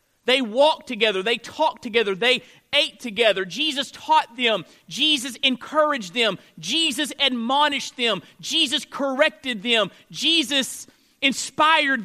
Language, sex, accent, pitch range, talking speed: English, male, American, 235-300 Hz, 115 wpm